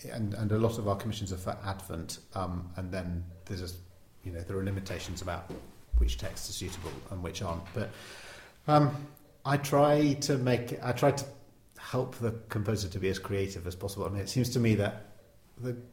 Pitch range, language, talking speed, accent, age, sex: 90-110 Hz, English, 205 wpm, British, 40-59, male